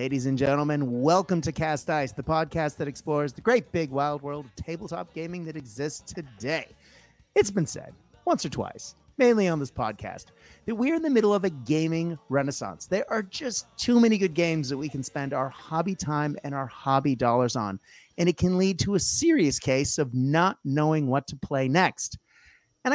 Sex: male